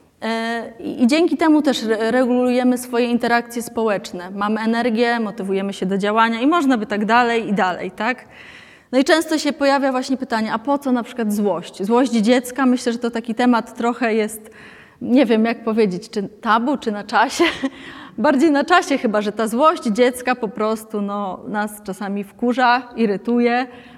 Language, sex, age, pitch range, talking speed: Polish, female, 20-39, 205-245 Hz, 175 wpm